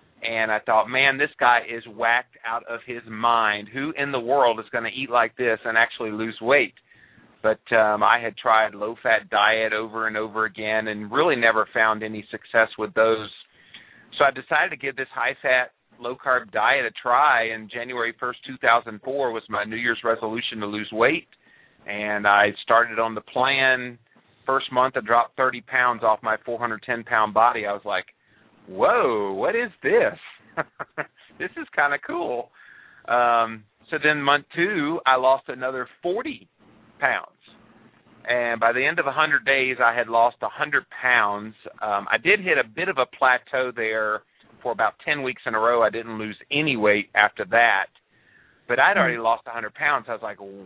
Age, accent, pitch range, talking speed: 40-59, American, 110-125 Hz, 180 wpm